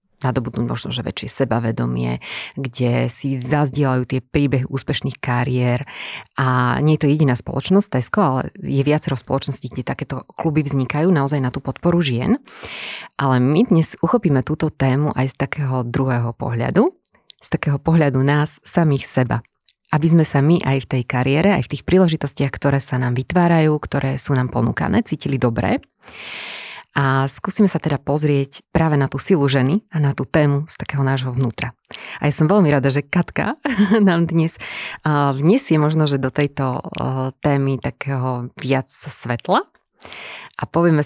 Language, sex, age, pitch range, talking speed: Slovak, female, 20-39, 130-155 Hz, 160 wpm